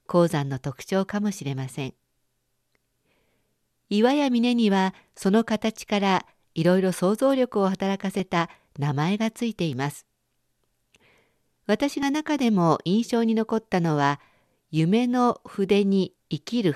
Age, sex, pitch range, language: 50-69, female, 165-225 Hz, Japanese